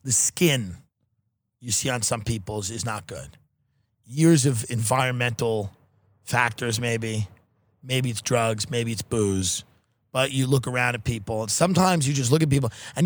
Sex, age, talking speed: male, 30-49, 160 wpm